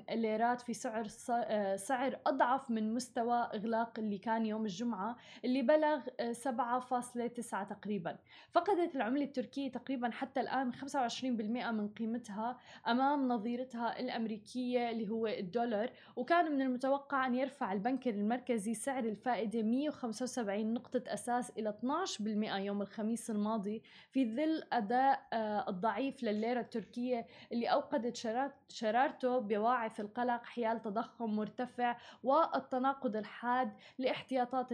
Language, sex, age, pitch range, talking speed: Arabic, female, 20-39, 225-260 Hz, 115 wpm